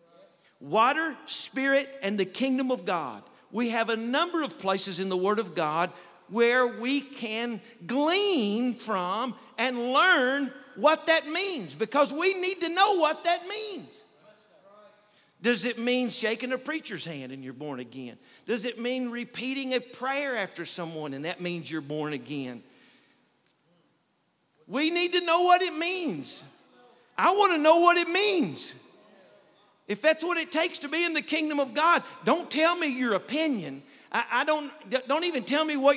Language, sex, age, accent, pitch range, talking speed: English, male, 50-69, American, 230-320 Hz, 165 wpm